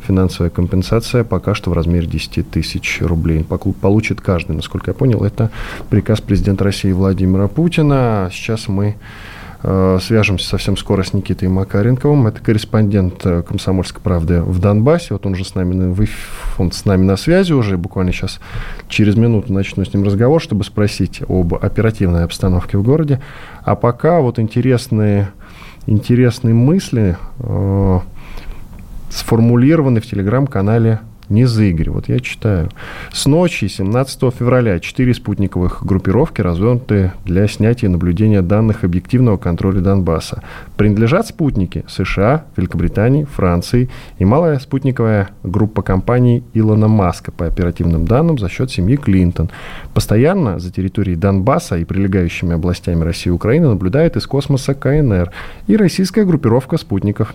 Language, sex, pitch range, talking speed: Russian, male, 95-120 Hz, 140 wpm